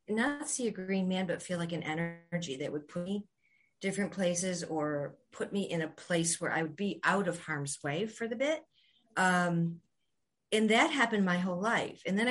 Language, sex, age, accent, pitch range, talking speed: English, female, 50-69, American, 155-195 Hz, 205 wpm